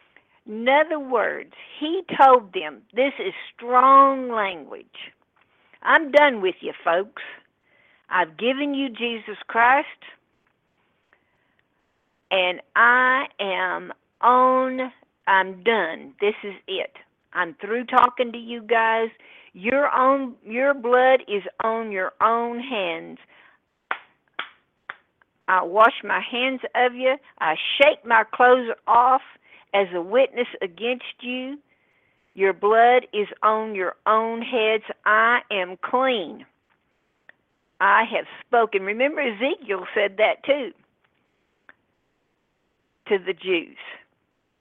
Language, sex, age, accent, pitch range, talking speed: English, female, 50-69, American, 205-260 Hz, 110 wpm